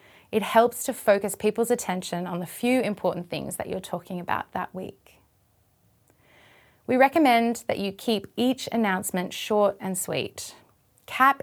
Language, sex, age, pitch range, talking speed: English, female, 30-49, 180-240 Hz, 145 wpm